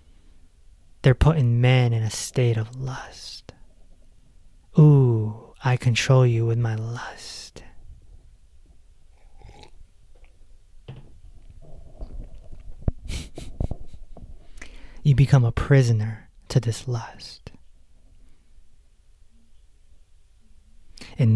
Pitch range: 80-130 Hz